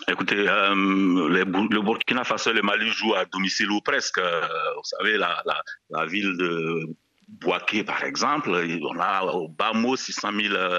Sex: male